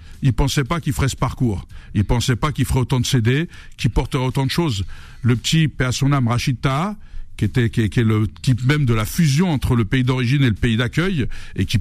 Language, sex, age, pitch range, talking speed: French, male, 60-79, 115-145 Hz, 230 wpm